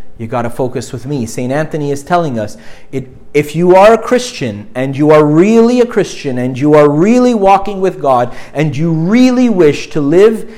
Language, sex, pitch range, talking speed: English, male, 130-195 Hz, 205 wpm